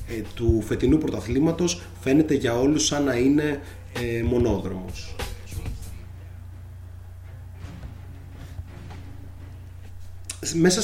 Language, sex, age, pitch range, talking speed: Greek, male, 30-49, 100-135 Hz, 65 wpm